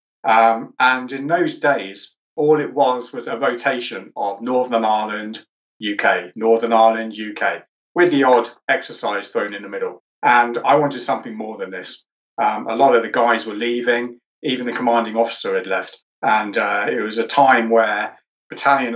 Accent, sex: British, male